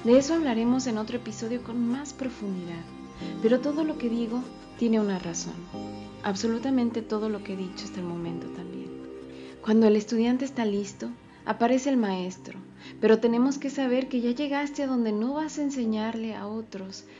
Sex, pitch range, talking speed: female, 190-245 Hz, 175 wpm